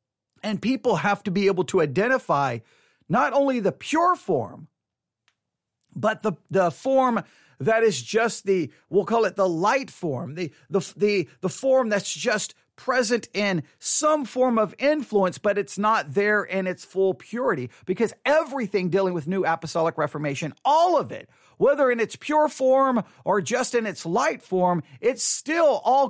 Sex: male